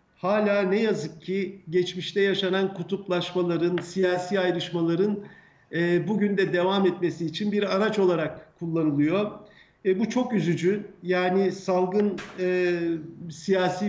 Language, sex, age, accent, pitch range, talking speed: Turkish, male, 50-69, native, 175-205 Hz, 115 wpm